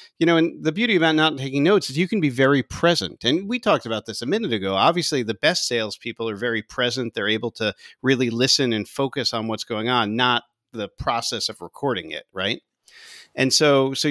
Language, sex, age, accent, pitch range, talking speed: English, male, 40-59, American, 110-140 Hz, 215 wpm